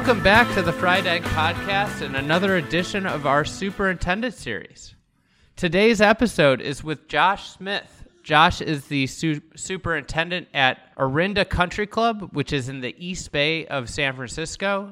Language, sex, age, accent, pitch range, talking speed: English, male, 30-49, American, 130-170 Hz, 150 wpm